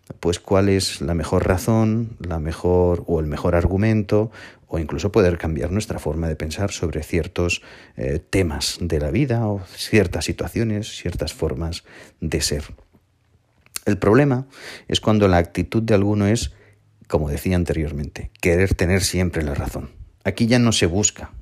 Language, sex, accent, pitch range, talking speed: Spanish, male, Spanish, 85-100 Hz, 155 wpm